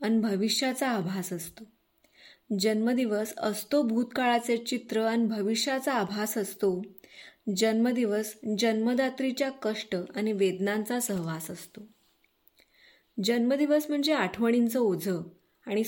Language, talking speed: Marathi, 90 wpm